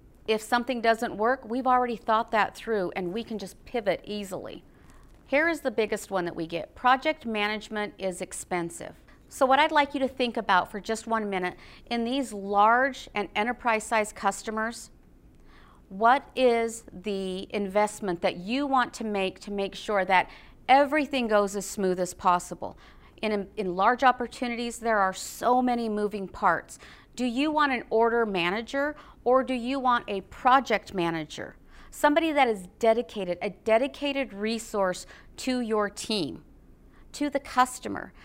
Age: 40-59